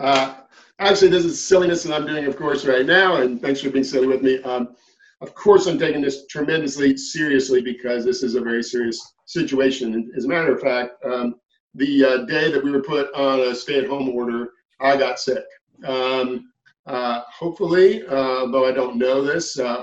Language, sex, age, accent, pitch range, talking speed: English, male, 50-69, American, 120-140 Hz, 195 wpm